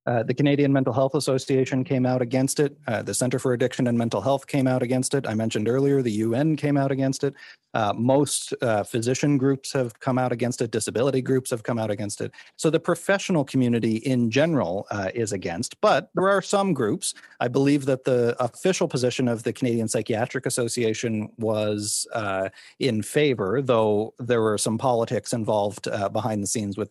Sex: male